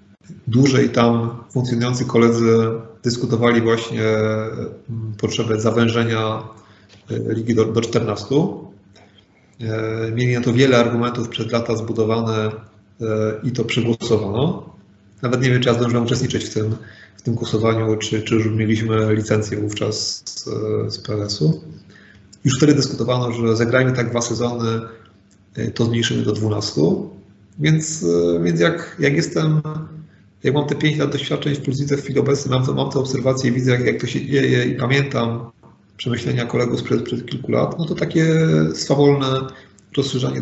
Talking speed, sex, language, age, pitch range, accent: 140 wpm, male, Polish, 30-49, 110-130 Hz, native